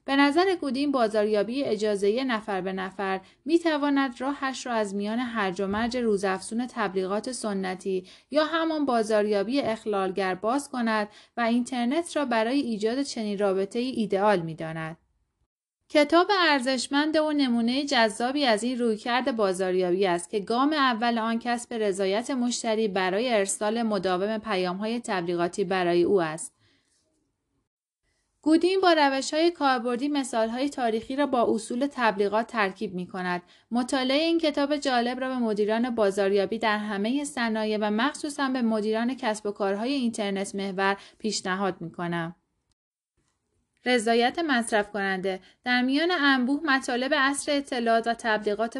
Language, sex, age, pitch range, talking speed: Persian, female, 30-49, 200-265 Hz, 135 wpm